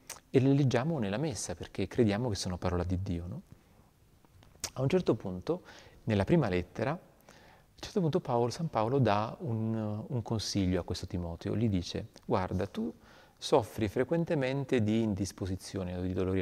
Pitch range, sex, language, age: 90-115 Hz, male, Italian, 40-59